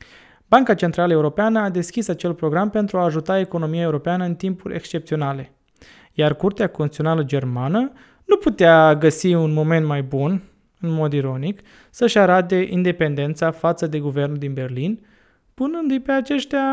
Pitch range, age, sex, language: 150-195 Hz, 20-39, male, Romanian